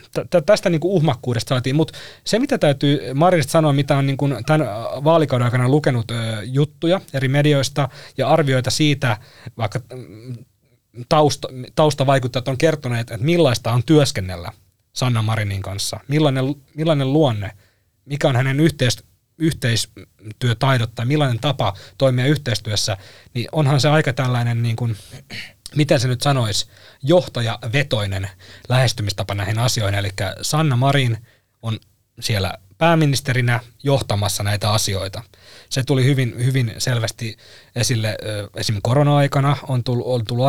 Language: Finnish